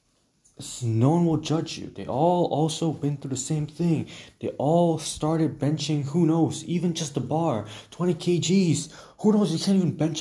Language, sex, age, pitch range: English, male, 20-39, 125-175 Hz